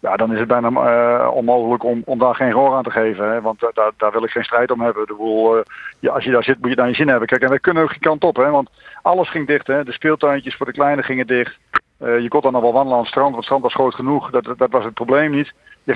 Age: 50-69